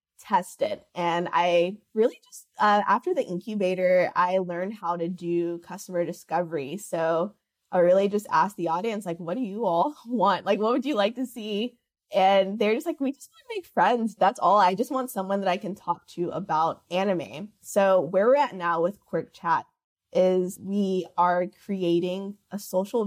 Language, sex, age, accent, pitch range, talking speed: English, female, 20-39, American, 175-205 Hz, 190 wpm